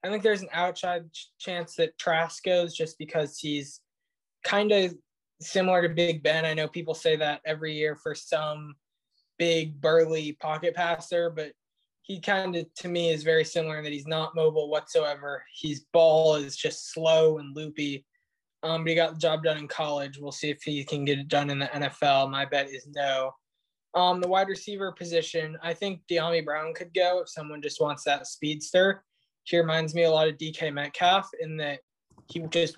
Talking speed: 195 wpm